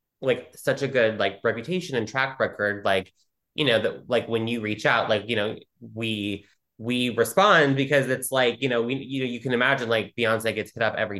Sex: male